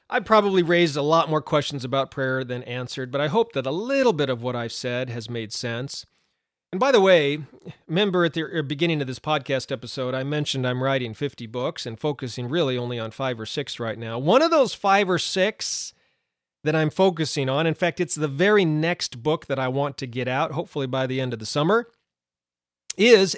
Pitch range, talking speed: 130-175 Hz, 215 wpm